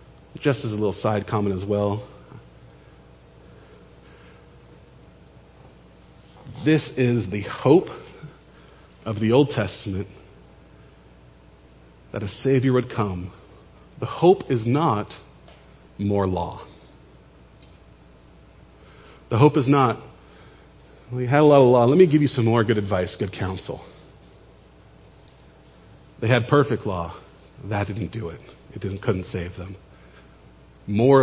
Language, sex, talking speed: English, male, 115 wpm